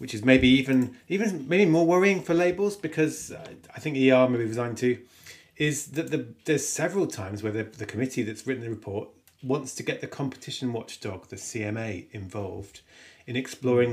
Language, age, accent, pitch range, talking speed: English, 30-49, British, 110-135 Hz, 185 wpm